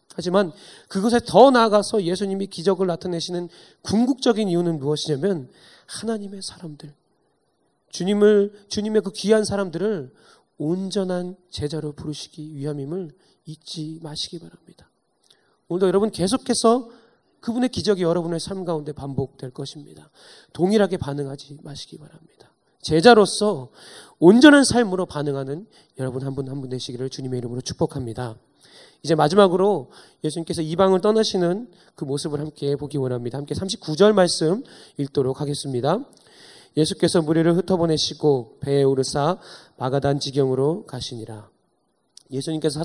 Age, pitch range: 30-49, 140-195 Hz